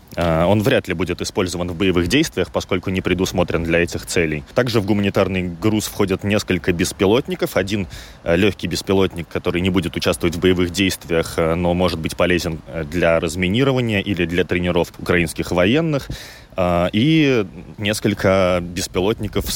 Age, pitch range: 20-39, 85-100 Hz